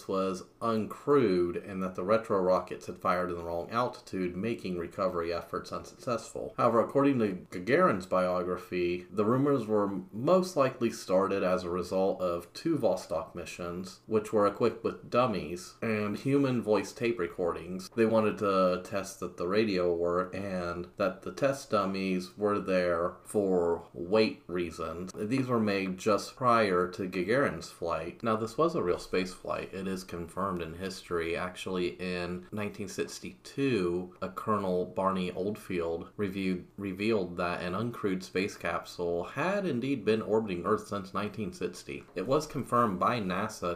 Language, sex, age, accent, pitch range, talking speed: English, male, 30-49, American, 90-110 Hz, 150 wpm